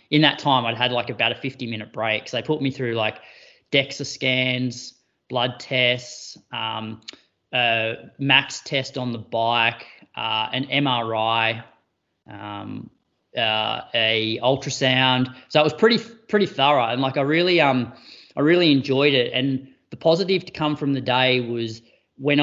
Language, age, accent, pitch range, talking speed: English, 20-39, Australian, 120-140 Hz, 160 wpm